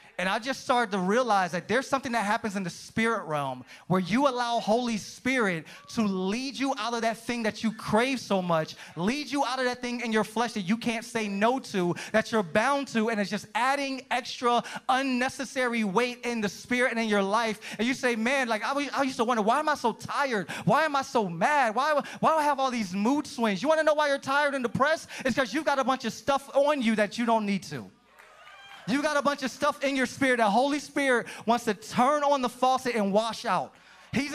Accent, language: American, English